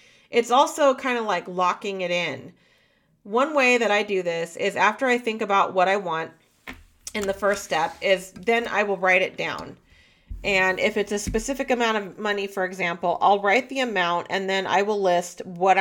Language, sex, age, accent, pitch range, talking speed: English, female, 40-59, American, 175-220 Hz, 200 wpm